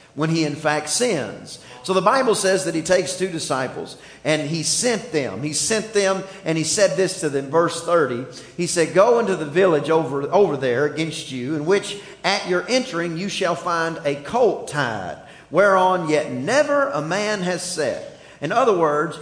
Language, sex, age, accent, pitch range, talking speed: English, male, 40-59, American, 160-225 Hz, 190 wpm